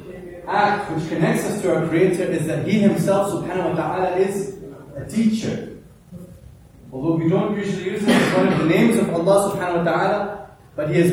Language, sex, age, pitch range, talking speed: English, male, 30-49, 150-195 Hz, 195 wpm